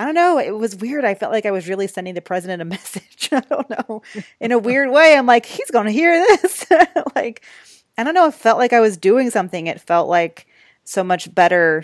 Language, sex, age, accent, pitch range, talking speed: English, female, 30-49, American, 165-205 Hz, 240 wpm